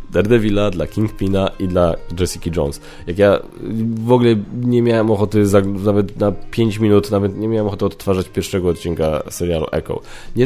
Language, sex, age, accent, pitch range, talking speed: Polish, male, 10-29, native, 90-115 Hz, 155 wpm